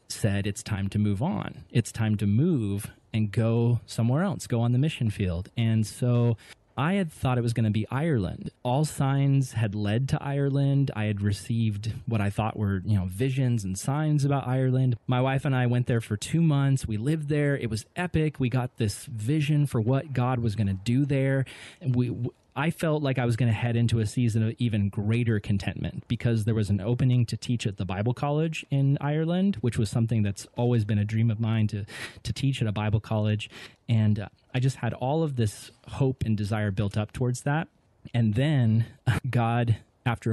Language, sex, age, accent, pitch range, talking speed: English, male, 30-49, American, 110-130 Hz, 210 wpm